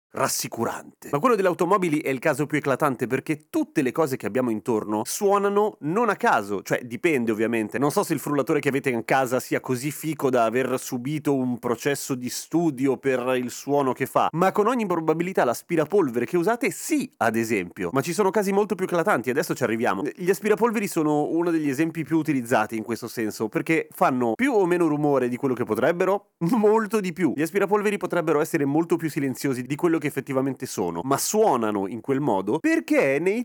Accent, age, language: native, 30-49, Italian